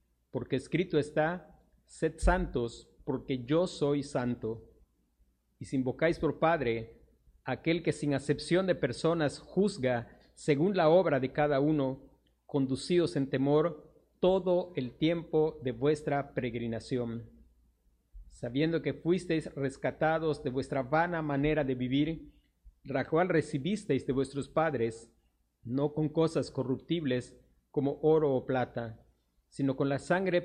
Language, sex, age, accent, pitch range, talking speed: Spanish, male, 50-69, Mexican, 120-155 Hz, 125 wpm